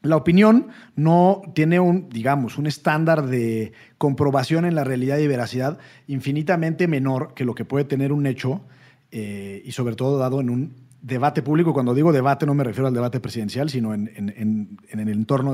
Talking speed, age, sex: 190 wpm, 40-59, male